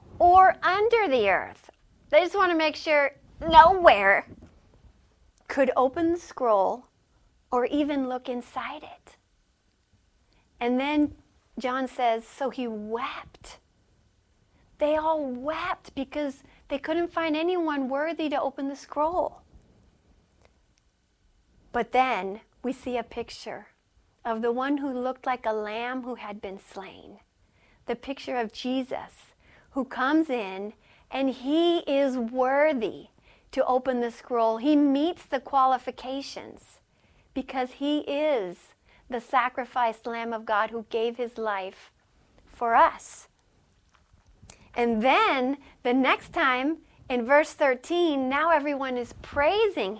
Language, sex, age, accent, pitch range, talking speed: English, female, 40-59, American, 230-295 Hz, 125 wpm